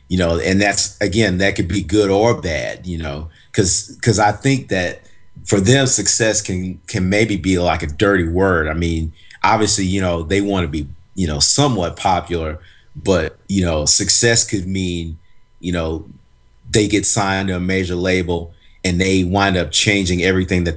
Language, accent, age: English, American, 40-59